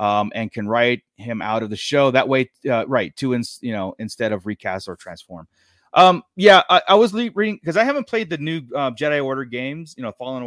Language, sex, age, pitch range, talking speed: English, male, 30-49, 115-165 Hz, 235 wpm